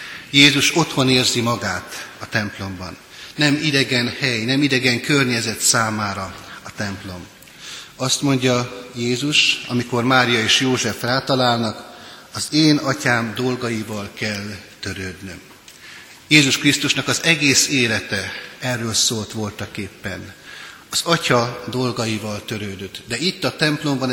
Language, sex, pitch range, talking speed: Hungarian, male, 110-135 Hz, 110 wpm